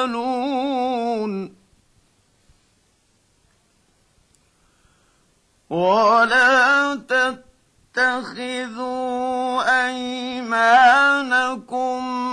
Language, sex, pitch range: Arabic, male, 235-255 Hz